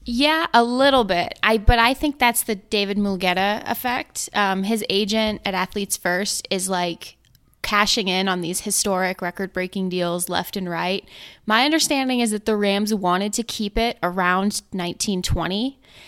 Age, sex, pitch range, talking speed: 20-39, female, 180-220 Hz, 170 wpm